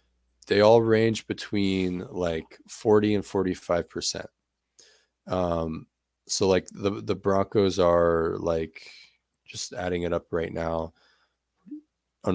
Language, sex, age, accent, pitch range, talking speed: English, male, 20-39, American, 85-105 Hz, 110 wpm